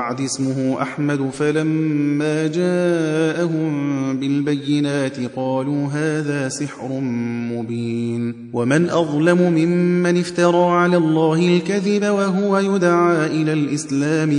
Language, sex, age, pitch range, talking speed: Persian, male, 30-49, 135-175 Hz, 90 wpm